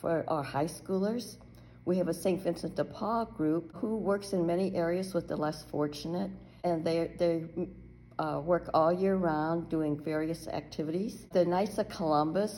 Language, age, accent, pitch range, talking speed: English, 60-79, American, 150-180 Hz, 170 wpm